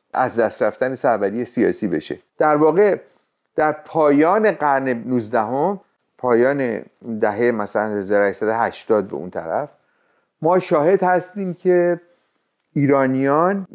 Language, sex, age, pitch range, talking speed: Persian, male, 50-69, 115-155 Hz, 105 wpm